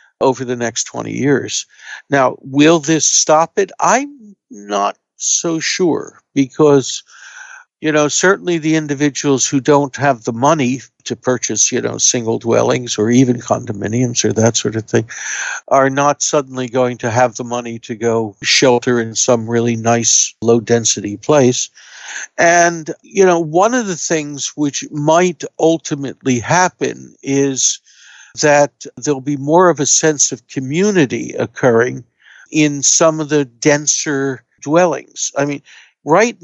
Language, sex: English, male